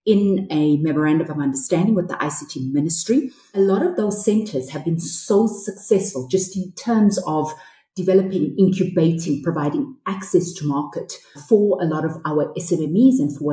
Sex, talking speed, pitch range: female, 160 wpm, 145-190 Hz